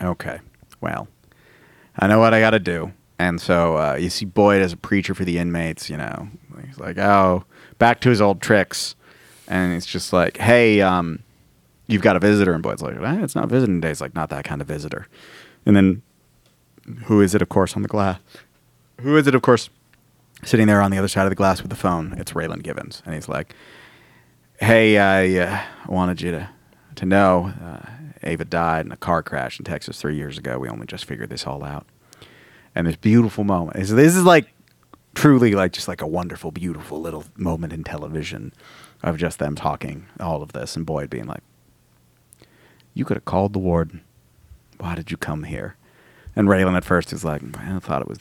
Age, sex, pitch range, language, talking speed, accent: 30-49, male, 85-105 Hz, English, 205 wpm, American